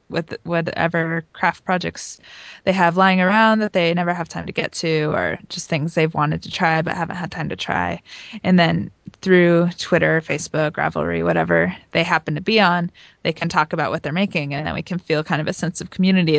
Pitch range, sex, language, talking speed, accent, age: 160-190 Hz, female, English, 215 wpm, American, 20-39